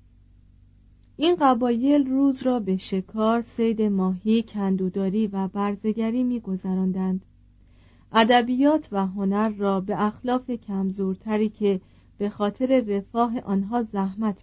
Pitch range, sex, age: 190-240 Hz, female, 40-59